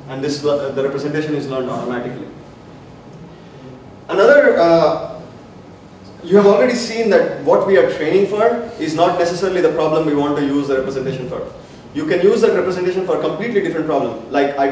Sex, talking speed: male, 175 wpm